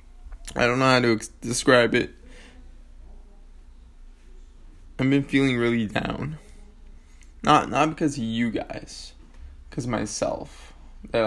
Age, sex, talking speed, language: 20-39, male, 115 wpm, English